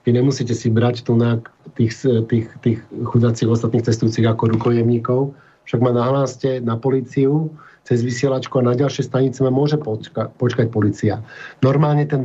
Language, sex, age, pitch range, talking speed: Slovak, male, 50-69, 120-140 Hz, 150 wpm